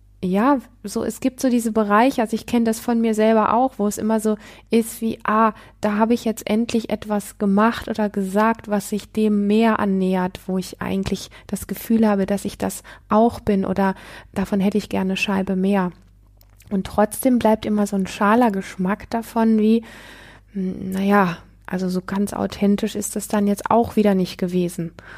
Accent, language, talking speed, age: German, German, 185 wpm, 20-39